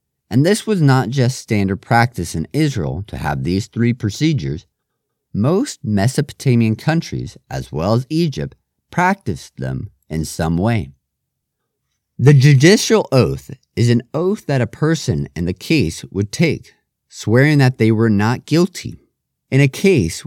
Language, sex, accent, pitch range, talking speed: English, male, American, 100-140 Hz, 145 wpm